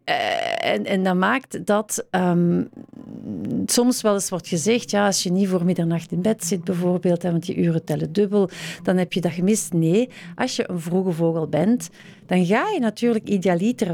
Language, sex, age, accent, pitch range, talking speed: Dutch, female, 40-59, Dutch, 170-210 Hz, 180 wpm